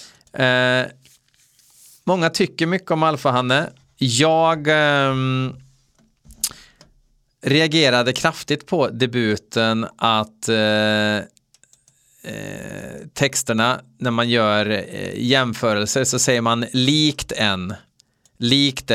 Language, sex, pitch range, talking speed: Swedish, male, 115-145 Hz, 90 wpm